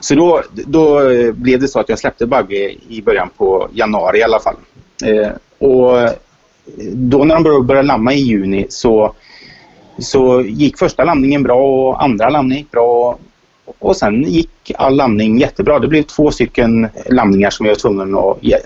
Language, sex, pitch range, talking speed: Swedish, male, 110-145 Hz, 170 wpm